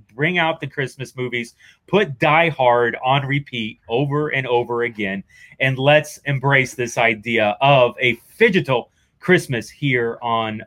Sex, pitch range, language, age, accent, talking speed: male, 120-150 Hz, English, 30-49, American, 140 wpm